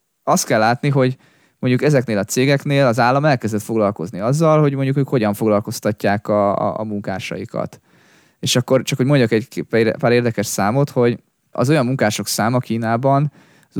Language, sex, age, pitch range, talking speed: Hungarian, male, 20-39, 105-125 Hz, 165 wpm